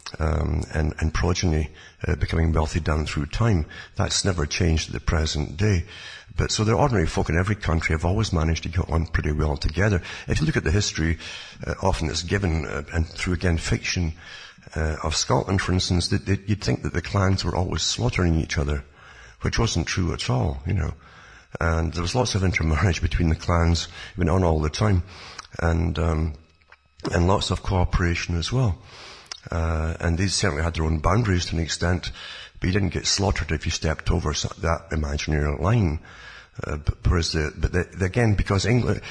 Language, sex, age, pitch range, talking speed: English, male, 60-79, 80-100 Hz, 190 wpm